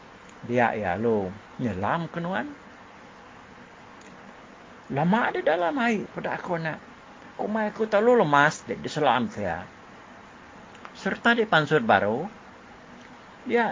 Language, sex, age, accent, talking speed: English, male, 60-79, Indonesian, 115 wpm